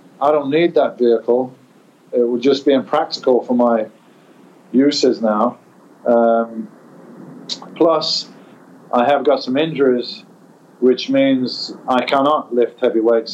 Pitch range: 115-140 Hz